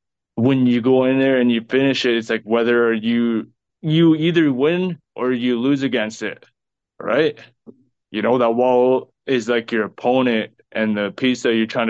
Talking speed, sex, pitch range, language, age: 180 wpm, male, 110-130 Hz, English, 20-39